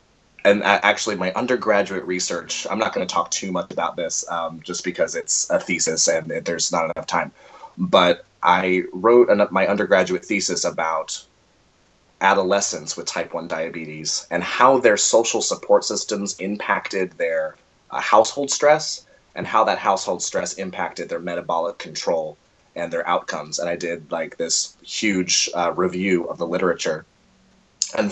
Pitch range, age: 85-115 Hz, 30-49